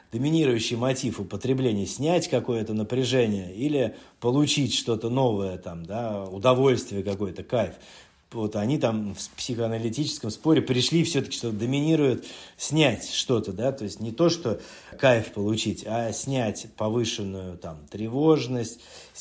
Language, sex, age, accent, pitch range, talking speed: Russian, male, 30-49, native, 105-130 Hz, 125 wpm